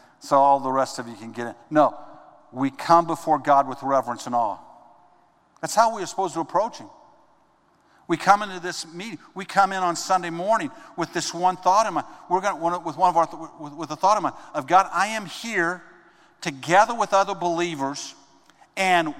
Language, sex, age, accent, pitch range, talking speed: English, male, 50-69, American, 150-190 Hz, 200 wpm